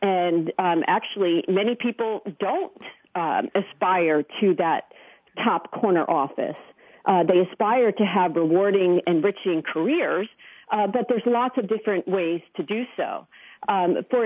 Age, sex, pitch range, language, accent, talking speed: 40-59, female, 185-260 Hz, English, American, 145 wpm